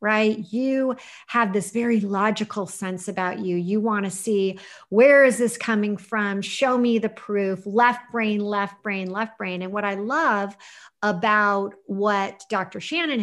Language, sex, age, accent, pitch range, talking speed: English, female, 40-59, American, 200-245 Hz, 165 wpm